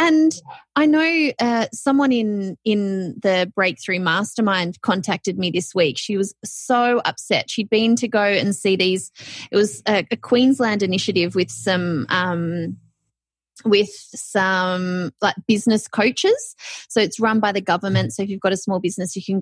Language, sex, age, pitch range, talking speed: English, female, 20-39, 190-255 Hz, 165 wpm